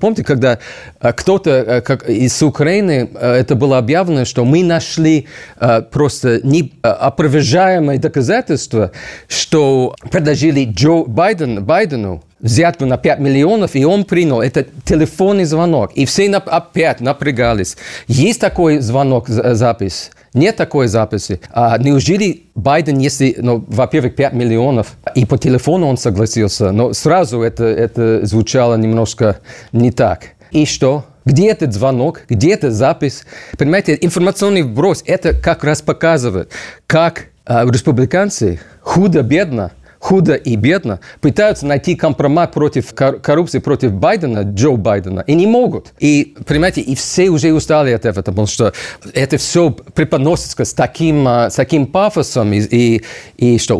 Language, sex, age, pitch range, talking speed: Russian, male, 40-59, 120-160 Hz, 135 wpm